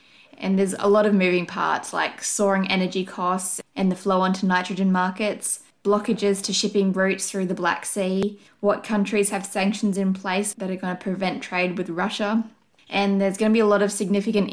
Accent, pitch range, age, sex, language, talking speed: Australian, 180-205 Hz, 20-39, female, English, 200 wpm